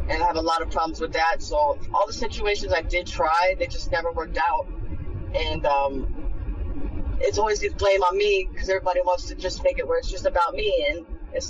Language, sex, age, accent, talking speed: English, female, 20-39, American, 225 wpm